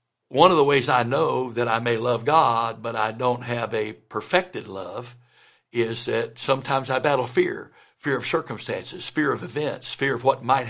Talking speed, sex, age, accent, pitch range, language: 190 wpm, male, 60-79, American, 120-165 Hz, English